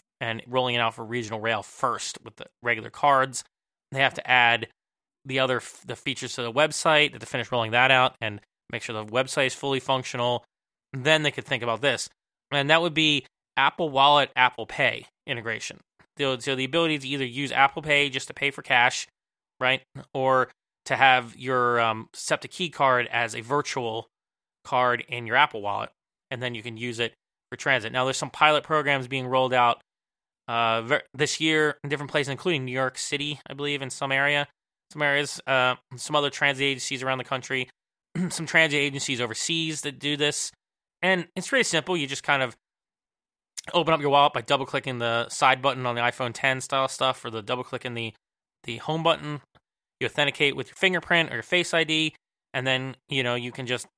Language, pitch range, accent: English, 120-145 Hz, American